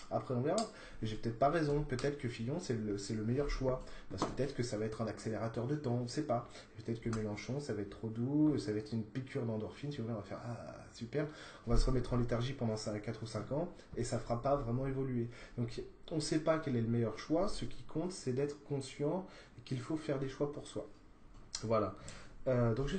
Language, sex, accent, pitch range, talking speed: French, male, French, 115-145 Hz, 260 wpm